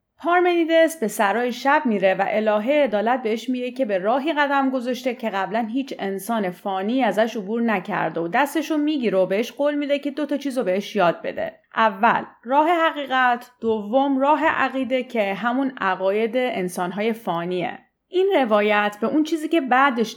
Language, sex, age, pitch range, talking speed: Persian, female, 30-49, 190-280 Hz, 160 wpm